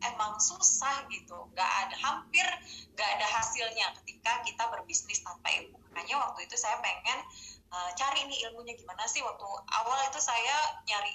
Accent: native